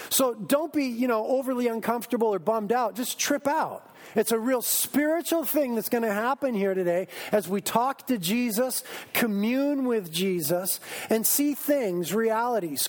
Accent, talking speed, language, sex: American, 170 wpm, English, male